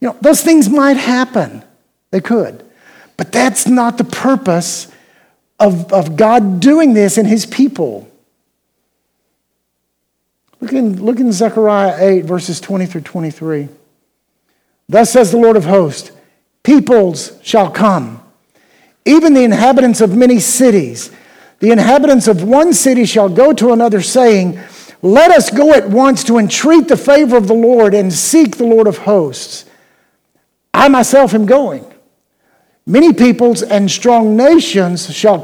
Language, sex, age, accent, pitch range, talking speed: English, male, 50-69, American, 190-255 Hz, 140 wpm